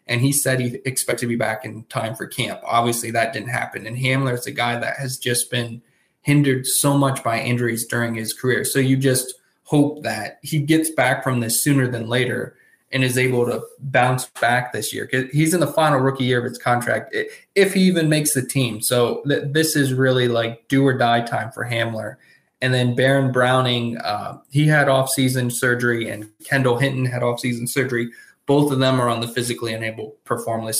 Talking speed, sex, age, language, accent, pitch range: 200 wpm, male, 20-39, English, American, 115-135 Hz